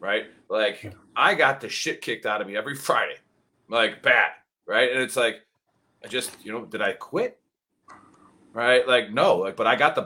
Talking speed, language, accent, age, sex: 195 wpm, English, American, 30-49, male